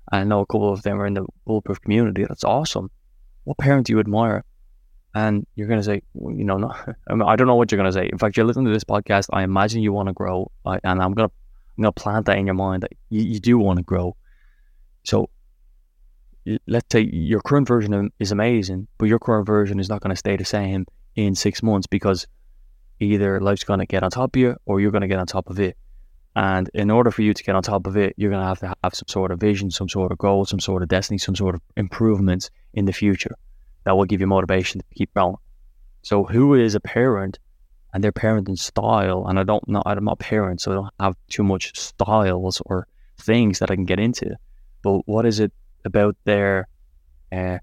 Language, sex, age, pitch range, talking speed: English, male, 20-39, 95-110 Hz, 240 wpm